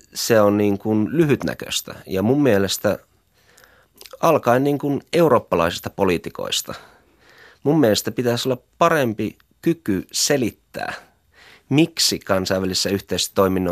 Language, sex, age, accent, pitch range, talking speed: Finnish, male, 30-49, native, 100-130 Hz, 100 wpm